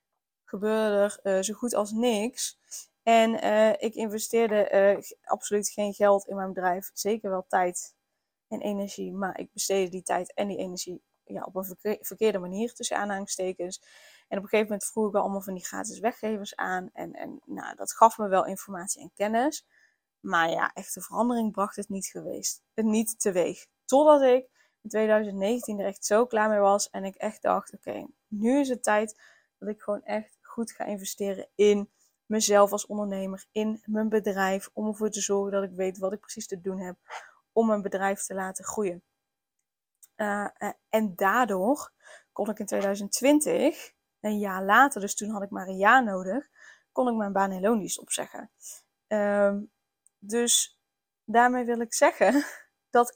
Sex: female